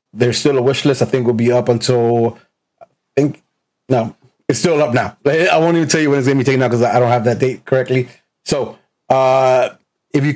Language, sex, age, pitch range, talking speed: English, male, 30-49, 120-135 Hz, 230 wpm